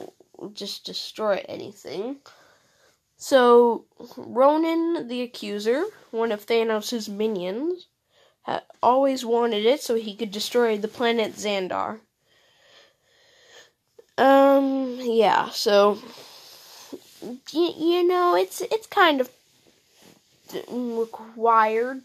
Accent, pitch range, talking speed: American, 205-260 Hz, 90 wpm